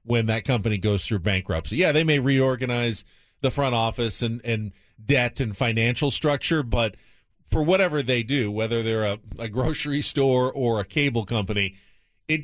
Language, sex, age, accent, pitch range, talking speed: English, male, 40-59, American, 110-140 Hz, 170 wpm